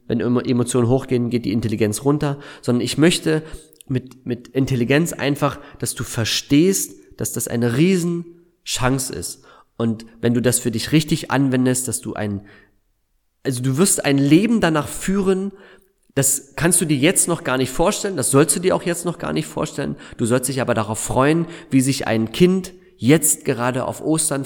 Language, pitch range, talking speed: German, 120-150 Hz, 180 wpm